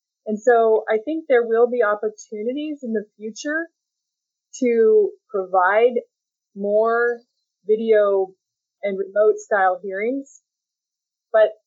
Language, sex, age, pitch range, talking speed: English, female, 30-49, 190-240 Hz, 105 wpm